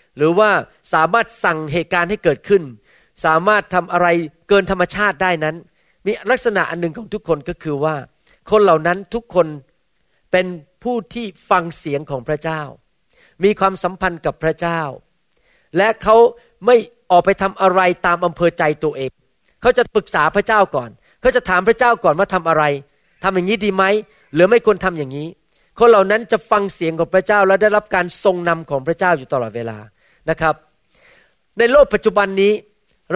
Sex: male